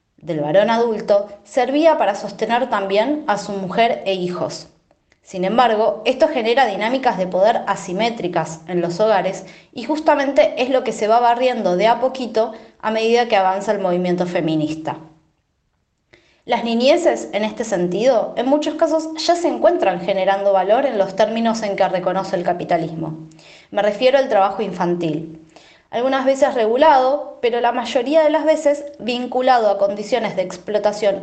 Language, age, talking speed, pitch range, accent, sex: Spanish, 20-39, 155 wpm, 185-245 Hz, Argentinian, female